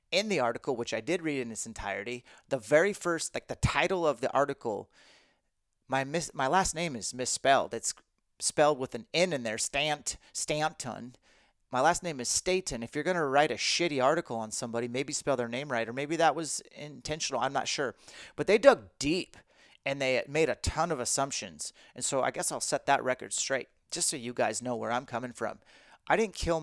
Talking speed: 215 wpm